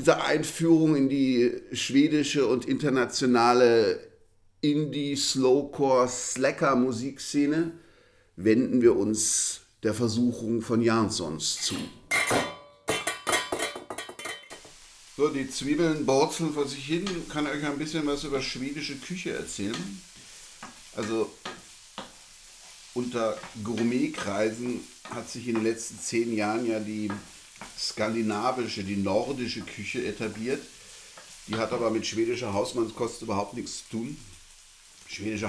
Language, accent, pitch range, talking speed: German, German, 95-130 Hz, 105 wpm